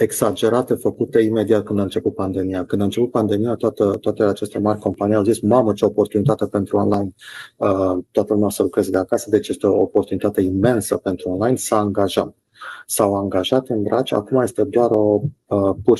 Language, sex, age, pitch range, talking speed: Romanian, male, 30-49, 100-120 Hz, 185 wpm